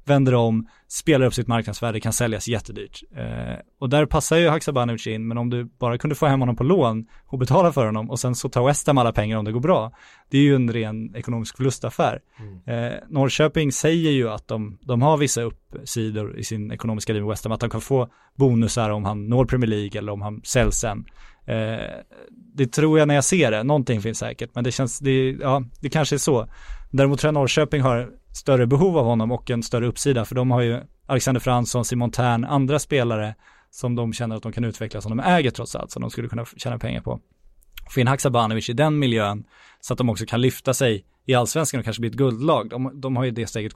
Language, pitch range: Swedish, 115-140 Hz